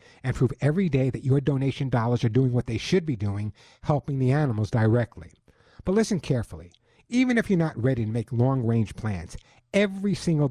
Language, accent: English, American